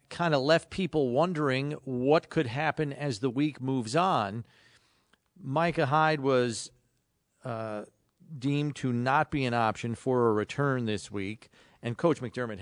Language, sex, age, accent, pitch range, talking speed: English, male, 40-59, American, 110-140 Hz, 145 wpm